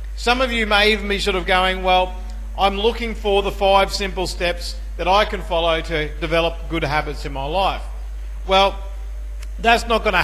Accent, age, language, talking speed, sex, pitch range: Australian, 50-69, English, 195 wpm, male, 150-200 Hz